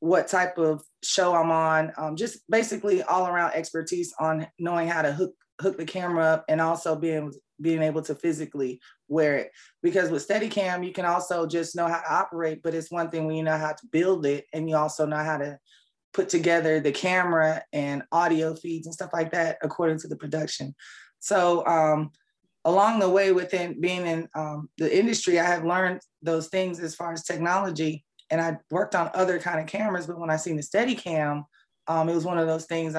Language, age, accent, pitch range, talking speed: English, 20-39, American, 155-180 Hz, 210 wpm